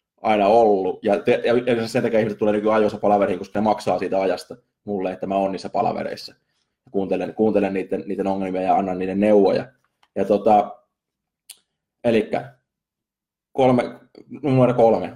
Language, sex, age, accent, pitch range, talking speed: Finnish, male, 20-39, native, 100-120 Hz, 145 wpm